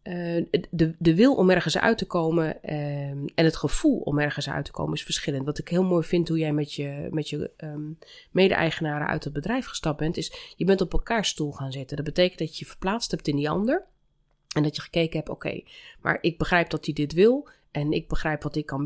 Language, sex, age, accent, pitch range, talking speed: Dutch, female, 30-49, Dutch, 150-185 Hz, 230 wpm